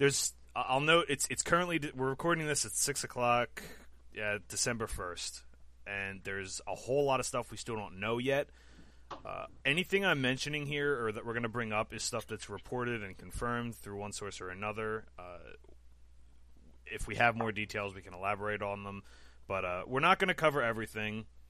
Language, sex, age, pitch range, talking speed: English, male, 30-49, 90-120 Hz, 185 wpm